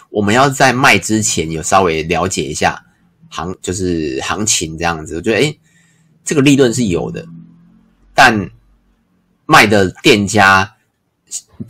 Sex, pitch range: male, 90-120 Hz